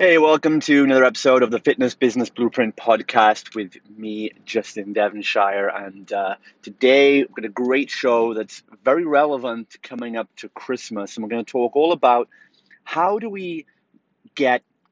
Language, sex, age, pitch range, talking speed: English, male, 30-49, 105-140 Hz, 165 wpm